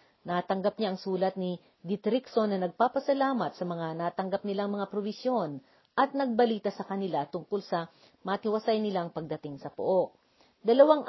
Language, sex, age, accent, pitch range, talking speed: Filipino, female, 40-59, native, 175-235 Hz, 140 wpm